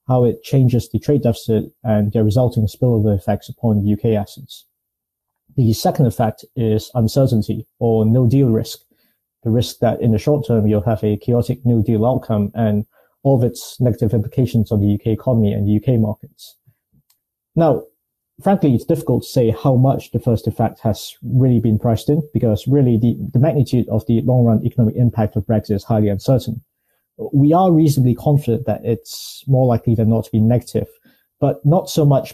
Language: English